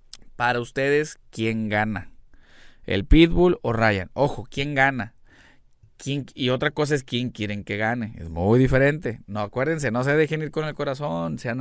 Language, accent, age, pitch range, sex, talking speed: Spanish, Mexican, 20-39, 100-140 Hz, male, 170 wpm